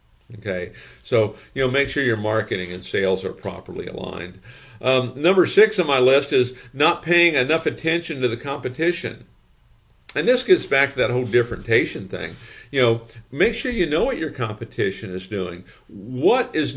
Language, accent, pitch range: English, American, 110-150 Hz